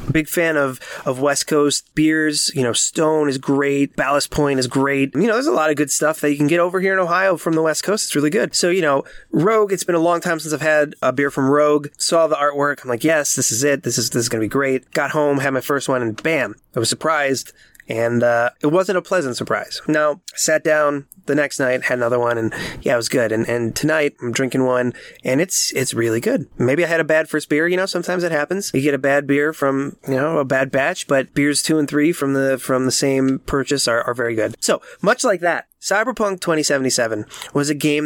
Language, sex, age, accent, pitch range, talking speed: English, male, 30-49, American, 130-160 Hz, 250 wpm